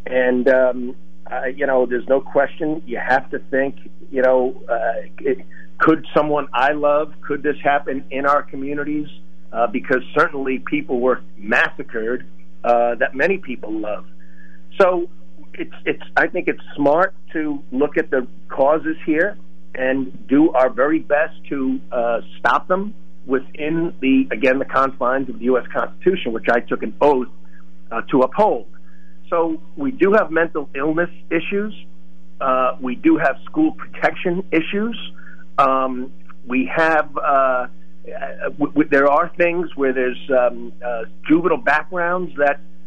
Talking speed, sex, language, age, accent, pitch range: 150 wpm, male, English, 50-69, American, 120-160 Hz